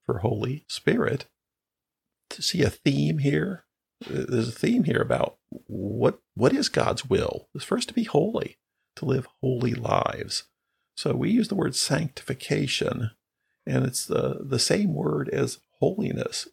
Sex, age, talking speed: male, 50-69, 145 wpm